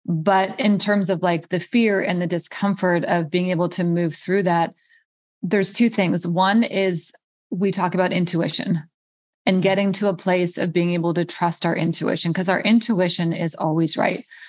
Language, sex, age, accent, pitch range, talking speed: English, female, 20-39, American, 175-210 Hz, 180 wpm